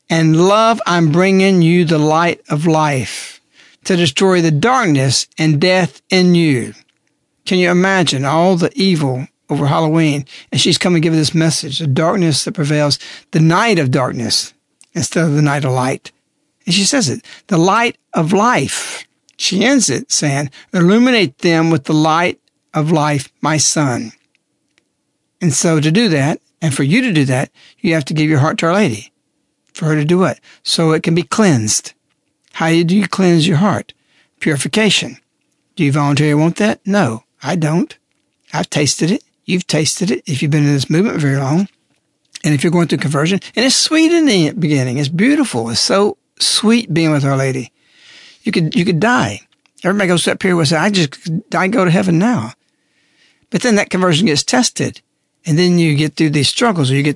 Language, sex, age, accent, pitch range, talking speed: English, male, 60-79, American, 150-185 Hz, 190 wpm